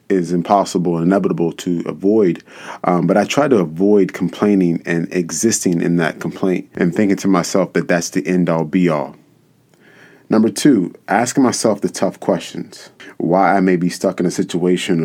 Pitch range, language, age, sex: 85-95 Hz, English, 30-49, male